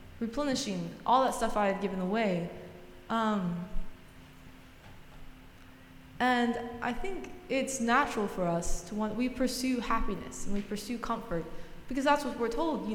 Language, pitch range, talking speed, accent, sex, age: English, 185-240 Hz, 145 wpm, American, female, 20-39